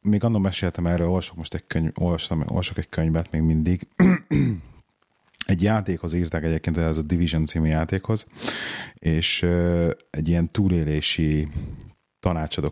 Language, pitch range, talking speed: Hungarian, 80-100 Hz, 125 wpm